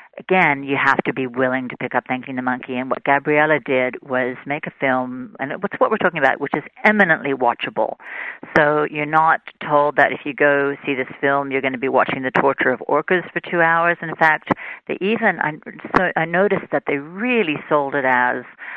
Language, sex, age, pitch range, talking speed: English, female, 50-69, 125-155 Hz, 210 wpm